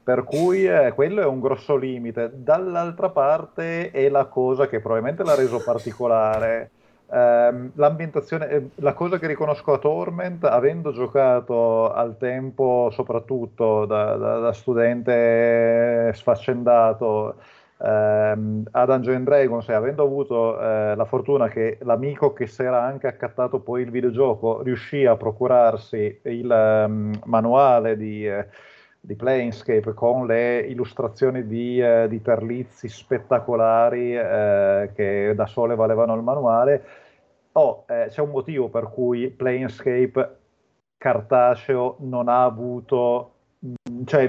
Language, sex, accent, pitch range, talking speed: Italian, male, native, 115-140 Hz, 130 wpm